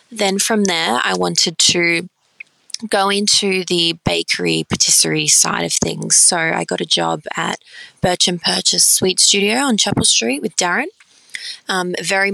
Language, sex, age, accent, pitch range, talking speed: English, female, 20-39, Australian, 155-190 Hz, 155 wpm